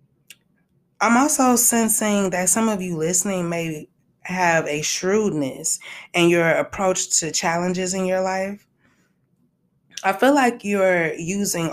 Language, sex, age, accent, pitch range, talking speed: English, female, 20-39, American, 160-200 Hz, 130 wpm